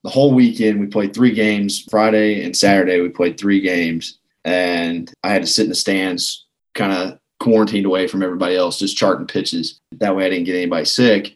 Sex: male